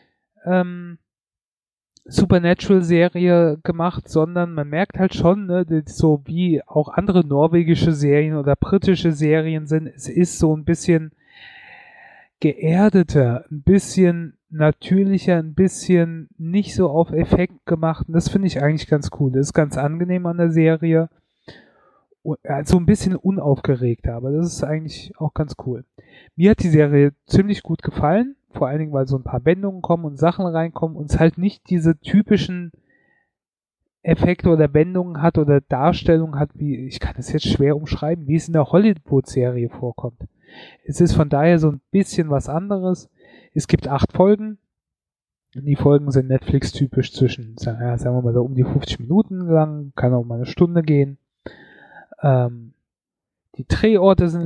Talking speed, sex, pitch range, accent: 155 wpm, male, 140-175 Hz, German